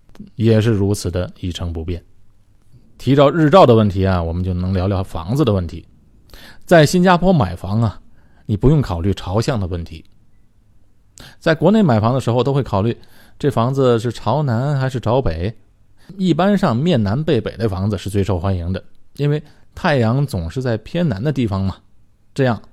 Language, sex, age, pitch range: Chinese, male, 20-39, 100-125 Hz